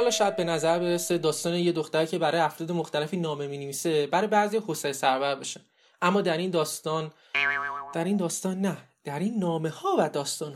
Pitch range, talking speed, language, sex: 155-200 Hz, 190 wpm, Persian, male